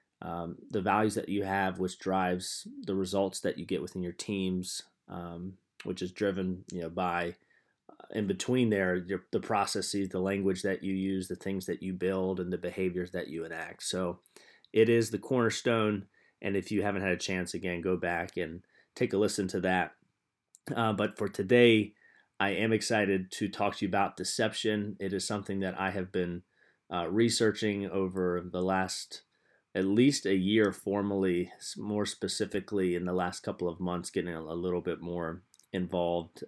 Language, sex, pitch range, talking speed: English, male, 90-100 Hz, 185 wpm